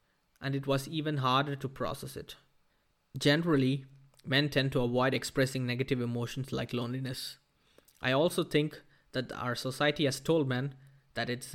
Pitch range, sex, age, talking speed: 125-145 Hz, male, 20-39, 150 wpm